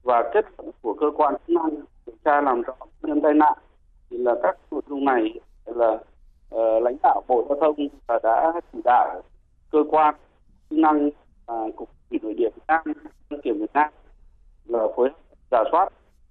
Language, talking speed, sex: Vietnamese, 190 wpm, male